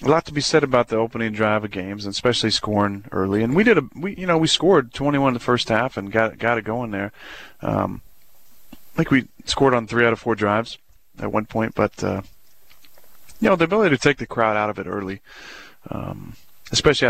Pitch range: 105-120 Hz